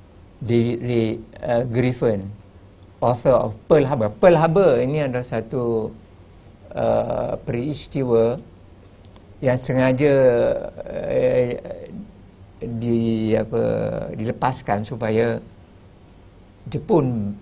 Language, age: Malay, 50-69